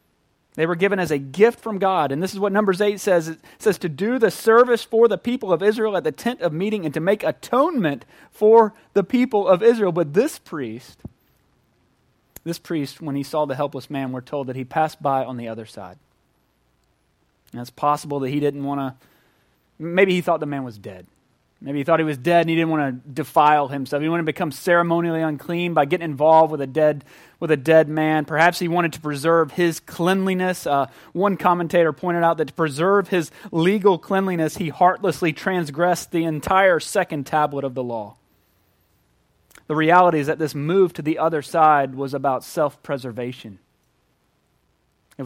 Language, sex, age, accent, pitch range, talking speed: English, male, 30-49, American, 140-180 Hz, 190 wpm